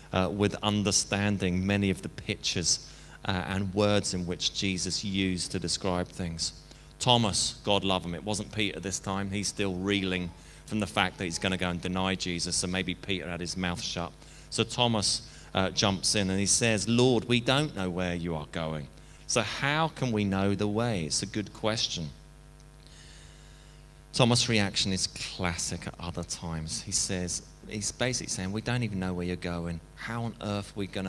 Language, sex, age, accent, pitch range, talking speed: English, male, 30-49, British, 85-105 Hz, 190 wpm